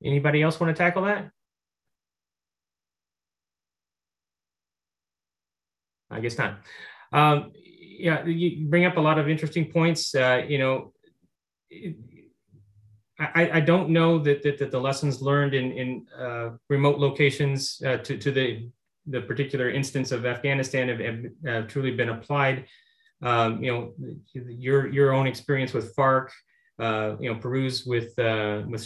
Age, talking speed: 30-49, 140 wpm